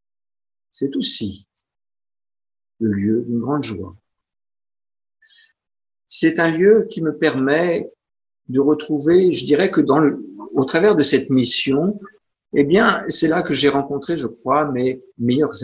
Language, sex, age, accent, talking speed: French, male, 50-69, French, 140 wpm